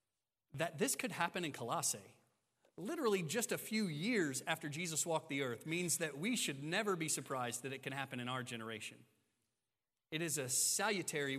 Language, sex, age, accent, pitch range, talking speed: English, male, 30-49, American, 120-150 Hz, 180 wpm